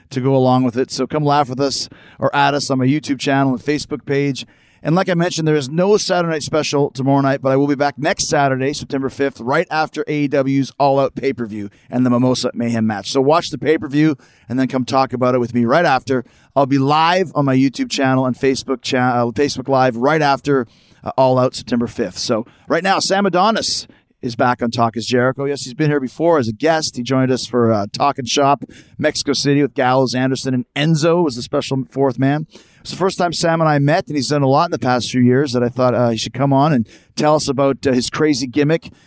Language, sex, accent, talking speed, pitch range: English, male, American, 245 wpm, 125-145 Hz